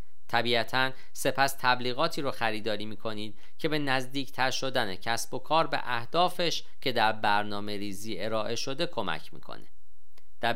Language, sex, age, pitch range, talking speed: Persian, male, 40-59, 105-140 Hz, 135 wpm